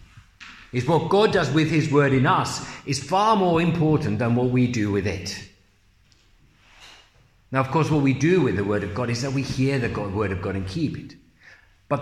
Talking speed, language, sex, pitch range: 210 wpm, English, male, 115-160 Hz